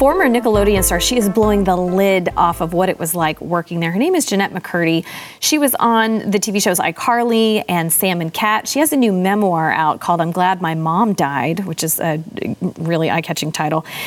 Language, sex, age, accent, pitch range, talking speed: English, female, 30-49, American, 170-220 Hz, 215 wpm